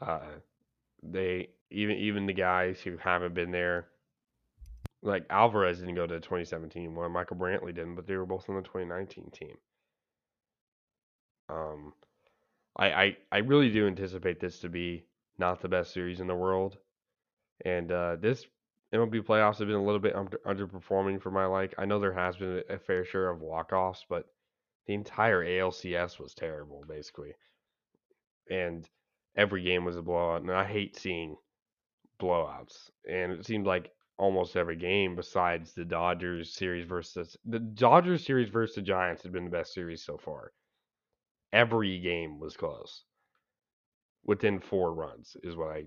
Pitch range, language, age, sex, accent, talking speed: 90-105 Hz, English, 10-29, male, American, 160 wpm